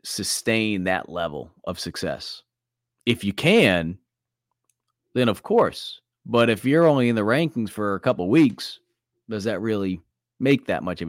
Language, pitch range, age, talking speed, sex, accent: English, 100-120 Hz, 30-49, 155 wpm, male, American